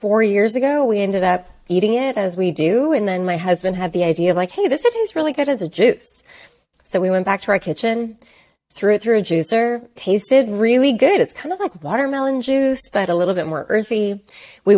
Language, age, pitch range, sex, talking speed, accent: English, 20-39, 170-235 Hz, female, 230 wpm, American